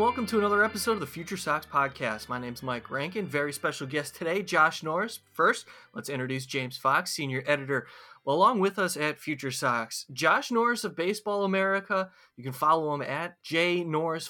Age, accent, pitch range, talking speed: 20-39, American, 135-180 Hz, 195 wpm